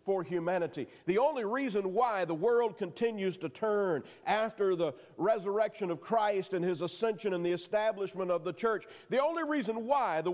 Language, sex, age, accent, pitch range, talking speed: English, male, 50-69, American, 190-260 Hz, 175 wpm